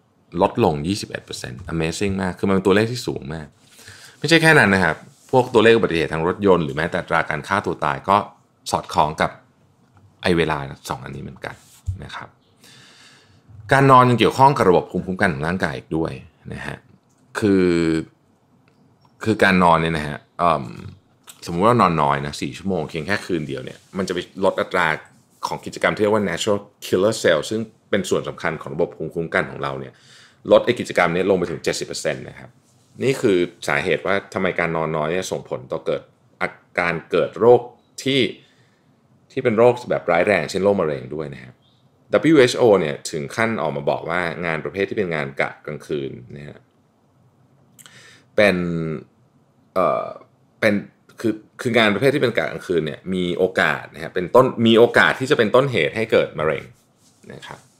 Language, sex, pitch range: Thai, male, 80-120 Hz